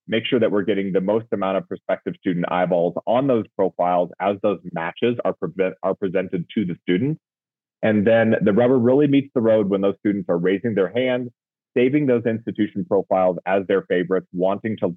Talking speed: 195 wpm